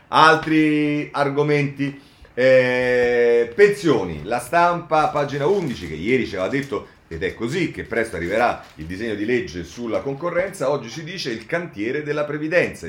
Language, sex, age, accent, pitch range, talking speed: Italian, male, 40-59, native, 100-150 Hz, 150 wpm